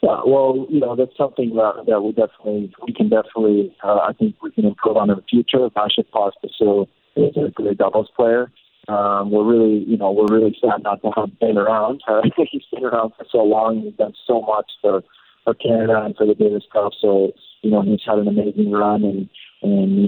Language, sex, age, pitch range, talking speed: English, male, 40-59, 100-110 Hz, 220 wpm